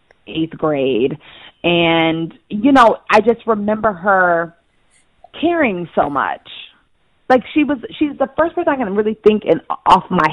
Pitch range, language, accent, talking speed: 175-250 Hz, English, American, 150 wpm